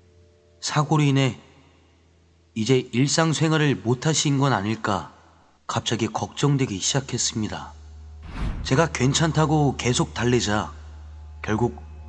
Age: 30-49